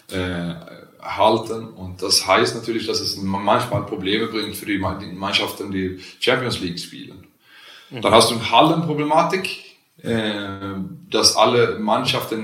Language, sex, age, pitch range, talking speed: German, male, 20-39, 95-120 Hz, 130 wpm